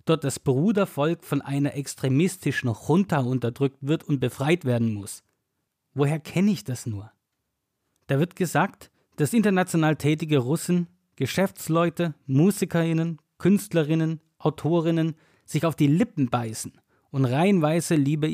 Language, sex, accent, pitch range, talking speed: German, male, German, 125-160 Hz, 120 wpm